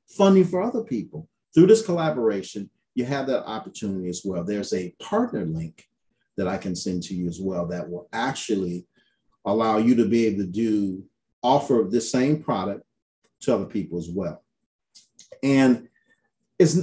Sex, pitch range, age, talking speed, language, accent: male, 95-145 Hz, 40-59, 165 wpm, English, American